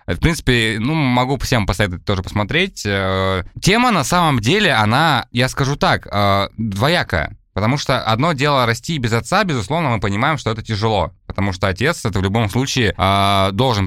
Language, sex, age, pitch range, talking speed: Russian, male, 20-39, 100-125 Hz, 160 wpm